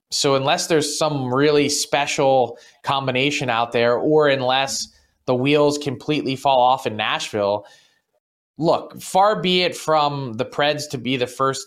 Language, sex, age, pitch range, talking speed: English, male, 20-39, 120-150 Hz, 150 wpm